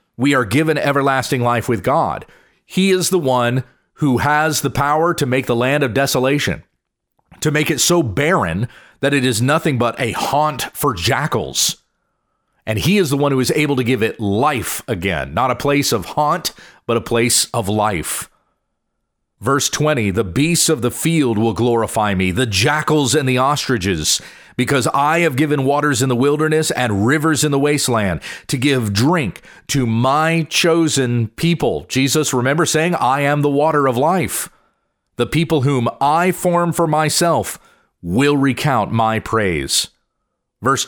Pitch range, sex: 120-155 Hz, male